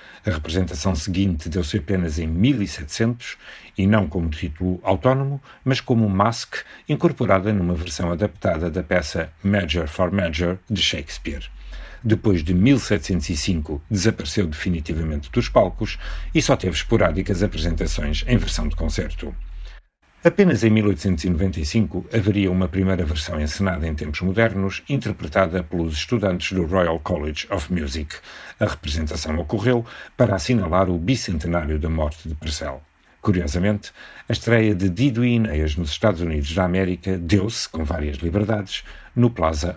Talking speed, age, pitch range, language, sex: 135 wpm, 50-69, 80-105 Hz, Portuguese, male